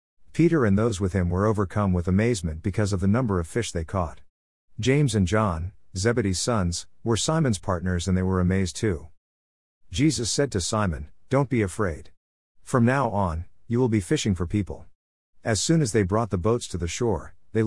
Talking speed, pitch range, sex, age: 195 wpm, 90-115 Hz, male, 50-69